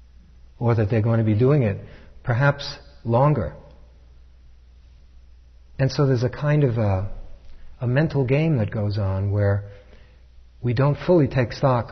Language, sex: English, male